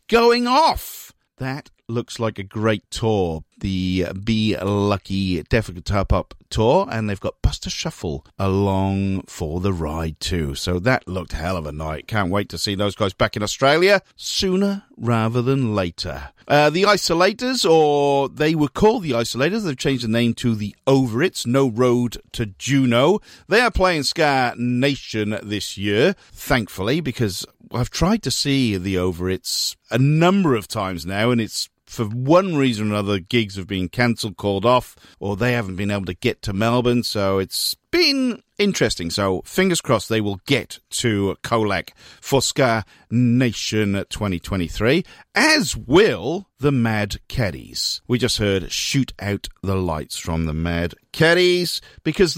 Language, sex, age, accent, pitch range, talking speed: English, male, 40-59, British, 95-135 Hz, 160 wpm